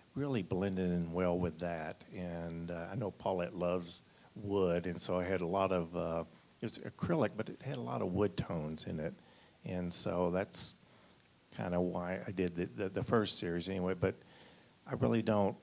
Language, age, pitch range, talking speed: English, 50-69, 90-105 Hz, 200 wpm